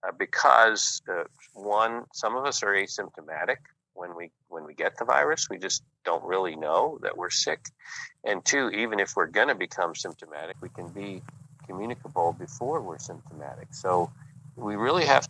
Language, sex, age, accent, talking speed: English, male, 50-69, American, 175 wpm